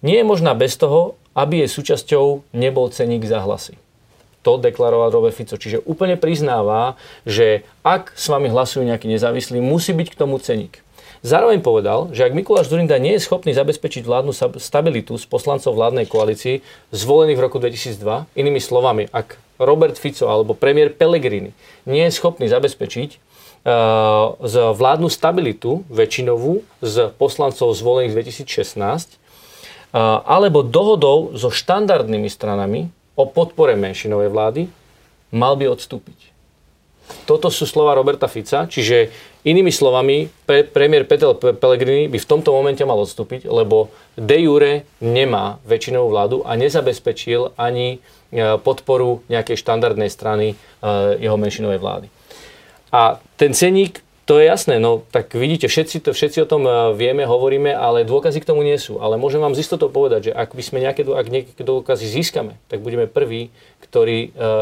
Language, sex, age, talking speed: Slovak, male, 40-59, 145 wpm